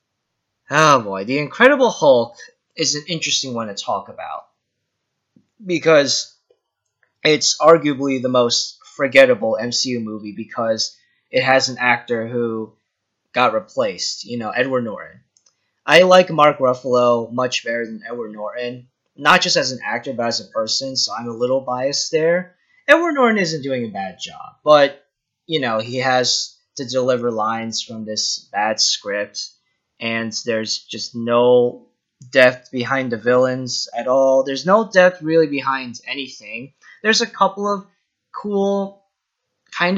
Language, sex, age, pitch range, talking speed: English, male, 20-39, 120-185 Hz, 145 wpm